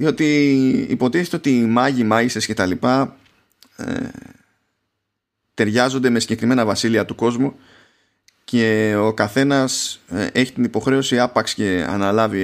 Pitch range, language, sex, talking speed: 110-140 Hz, Greek, male, 125 wpm